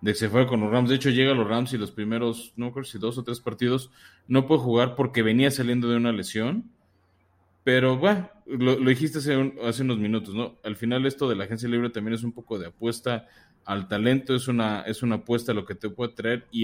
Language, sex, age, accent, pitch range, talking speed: Spanish, male, 20-39, Mexican, 110-130 Hz, 250 wpm